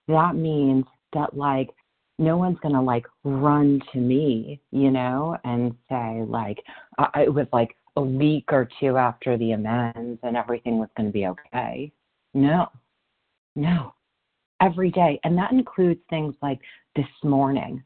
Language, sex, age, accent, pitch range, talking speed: English, female, 40-59, American, 115-145 Hz, 145 wpm